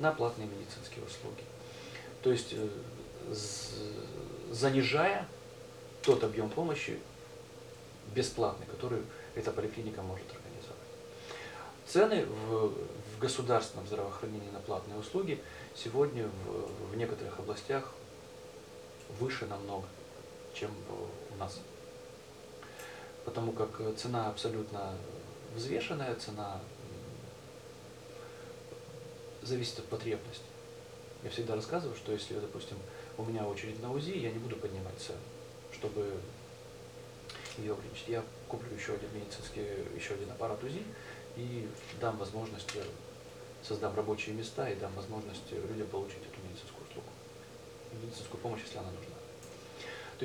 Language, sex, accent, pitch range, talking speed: Russian, male, native, 105-125 Hz, 110 wpm